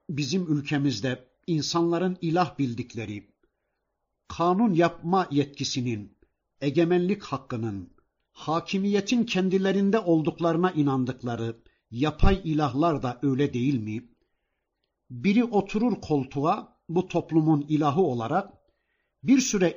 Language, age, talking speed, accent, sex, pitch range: Turkish, 60-79, 90 wpm, native, male, 130-190 Hz